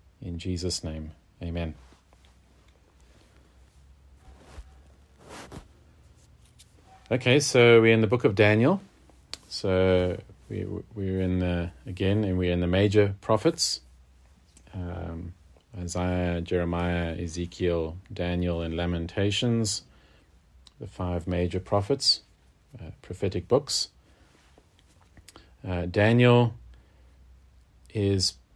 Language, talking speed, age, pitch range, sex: English, 85 wpm, 40-59, 80-95 Hz, male